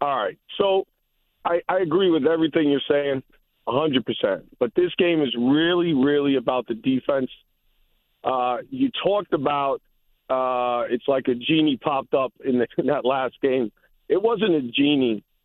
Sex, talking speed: male, 160 wpm